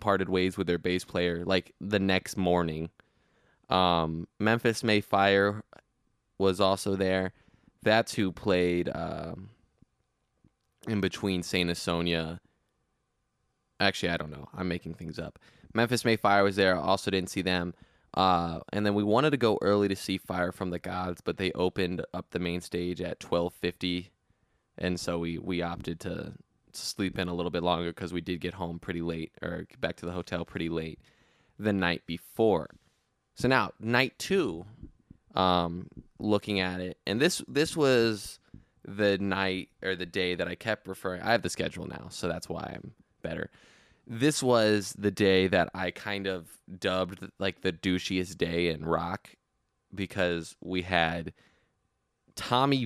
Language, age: English, 20-39